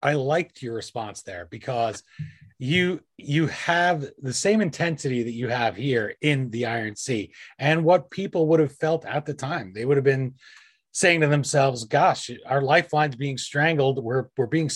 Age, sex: 30-49, male